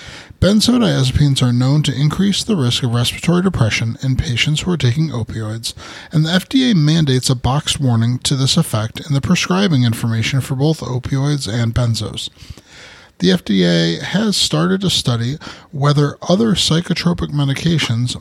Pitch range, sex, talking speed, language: 120-165 Hz, male, 150 wpm, English